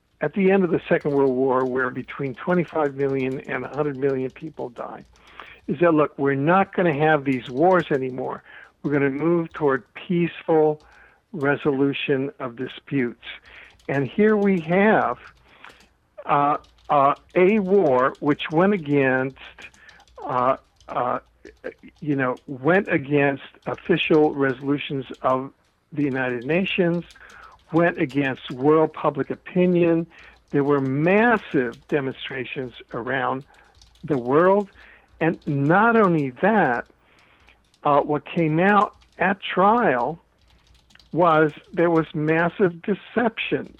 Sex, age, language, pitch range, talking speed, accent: male, 60-79, English, 140-175 Hz, 115 wpm, American